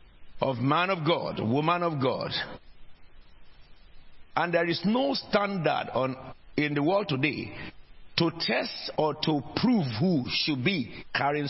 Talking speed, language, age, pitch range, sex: 135 wpm, English, 50-69, 130-190 Hz, male